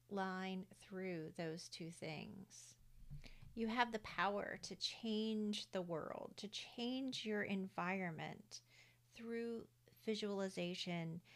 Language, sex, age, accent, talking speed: English, female, 40-59, American, 100 wpm